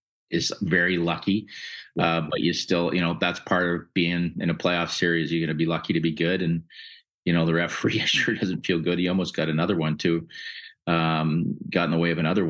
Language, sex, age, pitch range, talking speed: English, male, 40-59, 85-100 Hz, 225 wpm